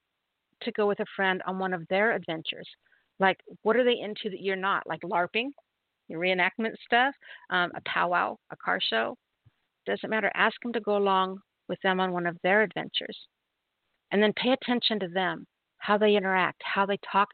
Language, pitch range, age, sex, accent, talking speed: English, 175-205 Hz, 50-69, female, American, 190 wpm